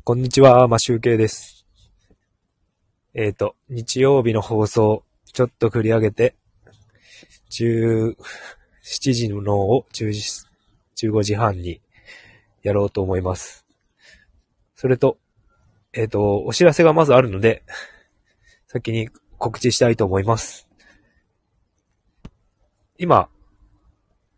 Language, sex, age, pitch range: Japanese, male, 20-39, 100-125 Hz